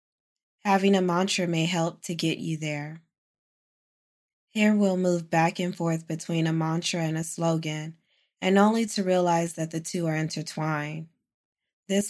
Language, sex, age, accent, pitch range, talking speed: English, female, 20-39, American, 160-185 Hz, 155 wpm